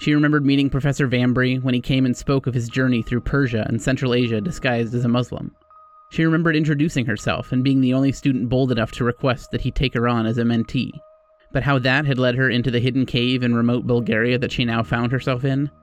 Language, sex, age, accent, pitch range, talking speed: English, male, 30-49, American, 120-140 Hz, 235 wpm